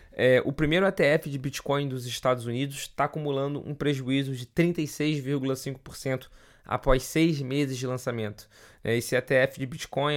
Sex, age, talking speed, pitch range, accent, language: male, 20-39, 135 wpm, 130-165 Hz, Brazilian, Portuguese